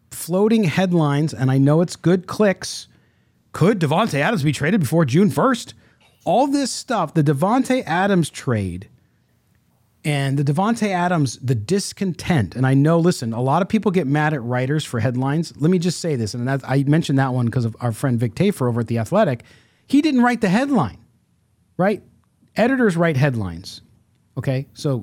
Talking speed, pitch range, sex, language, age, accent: 175 wpm, 130-195 Hz, male, English, 40-59, American